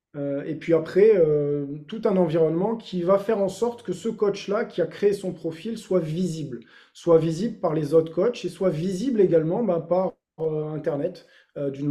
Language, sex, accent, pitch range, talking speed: French, male, French, 155-195 Hz, 190 wpm